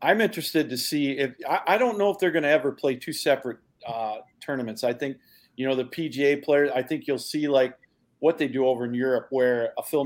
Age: 50-69